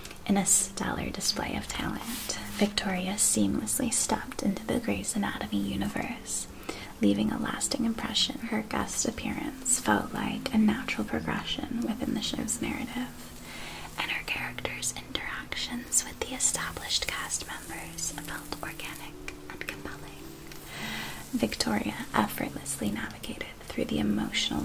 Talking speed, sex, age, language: 120 wpm, female, 20-39, English